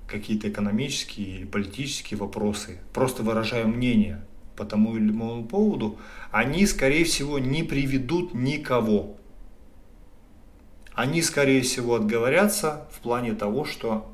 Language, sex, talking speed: Russian, male, 115 wpm